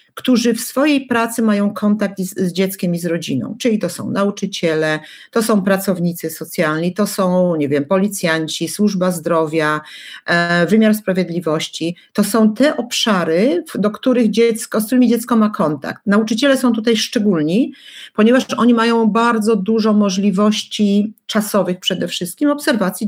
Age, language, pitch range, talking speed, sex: 50-69, Polish, 180-230 Hz, 145 wpm, female